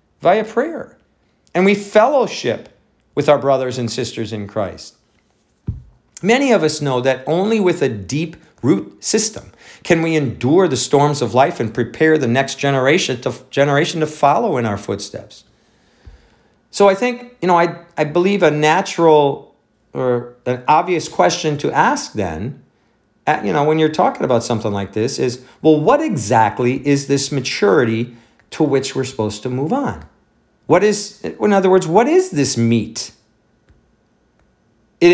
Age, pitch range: 50-69, 125-165 Hz